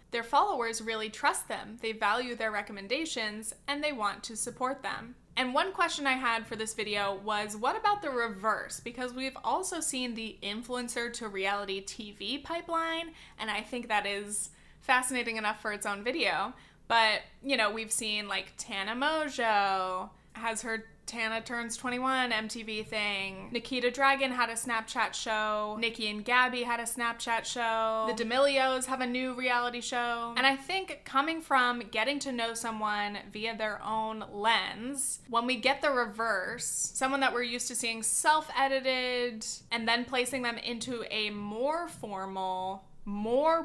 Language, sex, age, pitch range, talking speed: English, female, 20-39, 215-255 Hz, 160 wpm